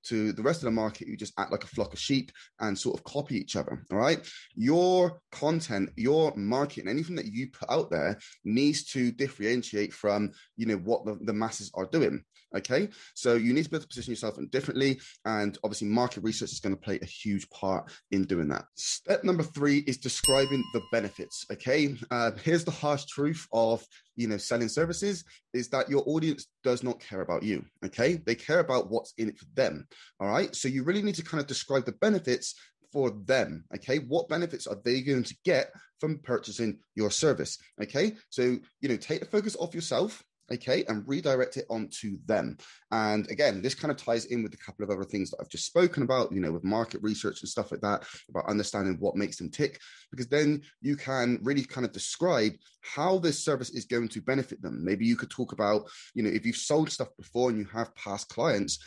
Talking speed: 215 wpm